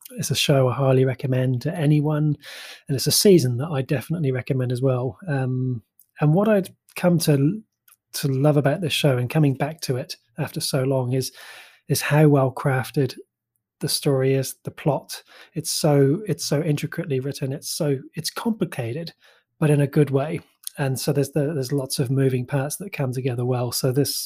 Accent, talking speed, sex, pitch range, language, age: British, 190 wpm, male, 130-155 Hz, English, 20-39